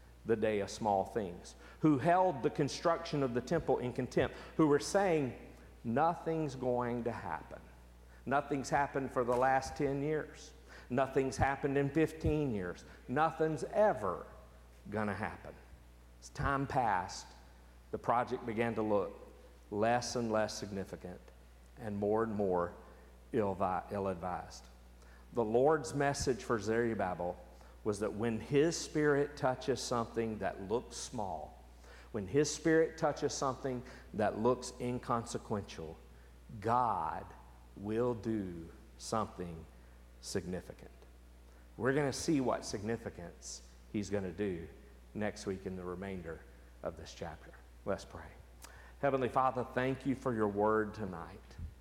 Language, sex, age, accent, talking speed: English, male, 50-69, American, 125 wpm